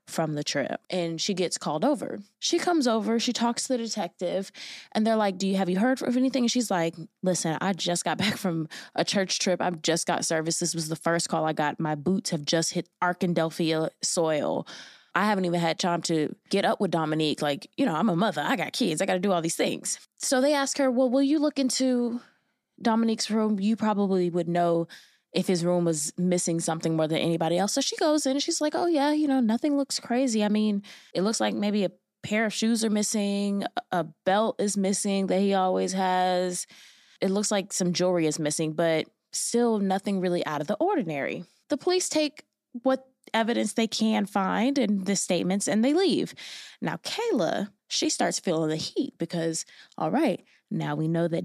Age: 20-39